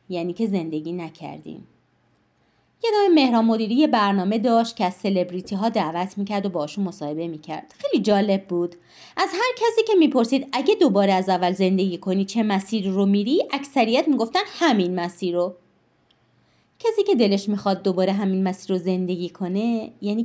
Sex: female